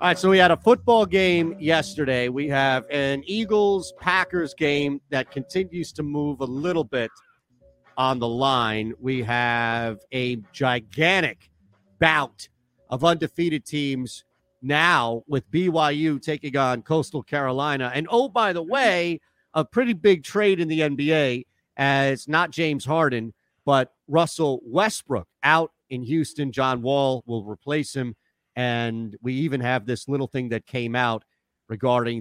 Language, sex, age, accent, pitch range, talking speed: English, male, 40-59, American, 125-165 Hz, 145 wpm